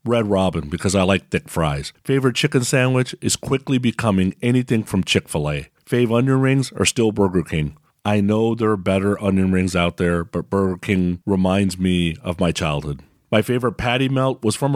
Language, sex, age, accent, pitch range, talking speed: English, male, 40-59, American, 95-125 Hz, 185 wpm